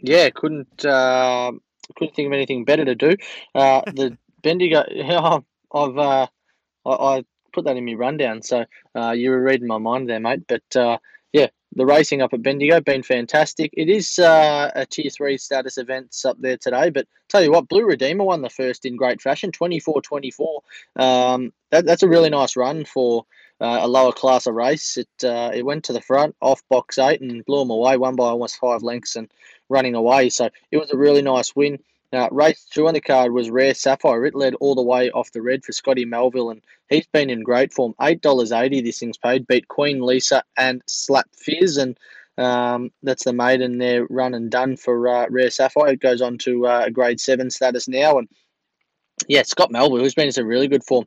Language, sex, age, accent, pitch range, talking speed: English, male, 20-39, Australian, 125-140 Hz, 215 wpm